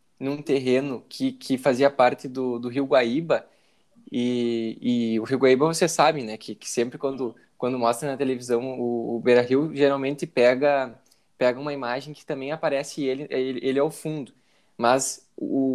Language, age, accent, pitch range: Portuguese, 10-29, Brazilian, 130-160 Hz